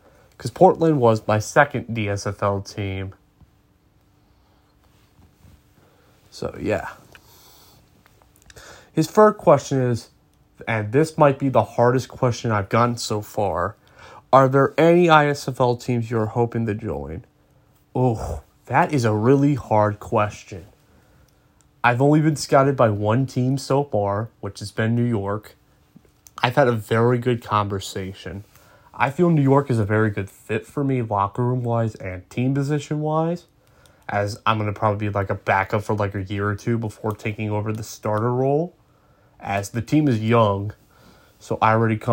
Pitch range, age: 105-125 Hz, 30-49